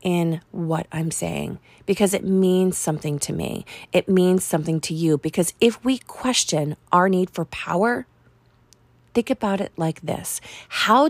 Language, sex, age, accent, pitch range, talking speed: English, female, 30-49, American, 155-195 Hz, 155 wpm